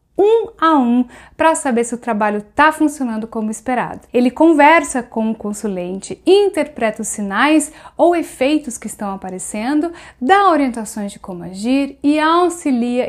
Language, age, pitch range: Portuguese, 10-29, 220-290 Hz